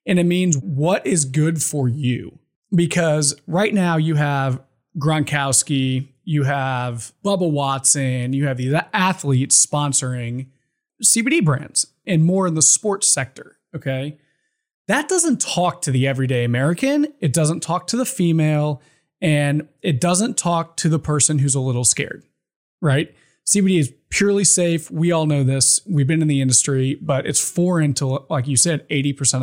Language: English